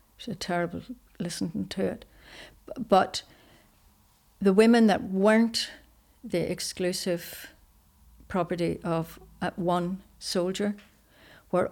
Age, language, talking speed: 60-79, English, 95 wpm